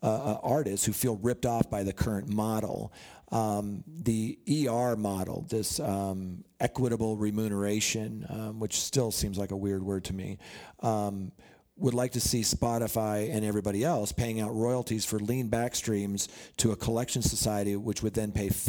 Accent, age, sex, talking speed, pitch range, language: American, 40-59, male, 165 wpm, 100-120 Hz, English